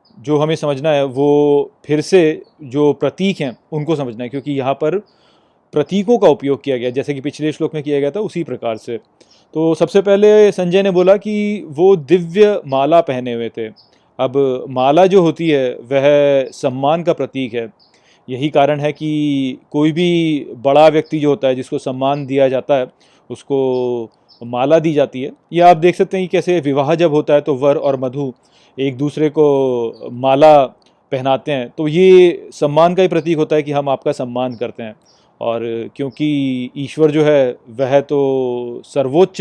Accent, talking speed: native, 180 wpm